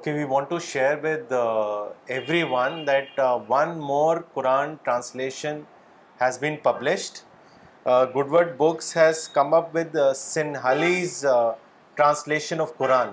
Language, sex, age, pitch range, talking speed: Urdu, male, 30-49, 140-170 Hz, 140 wpm